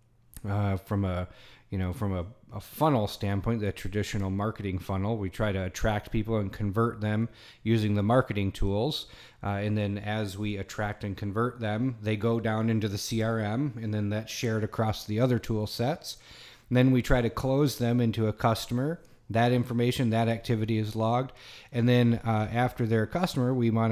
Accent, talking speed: American, 185 wpm